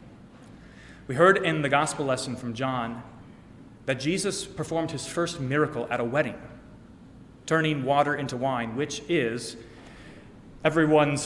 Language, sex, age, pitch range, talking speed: English, male, 30-49, 125-155 Hz, 130 wpm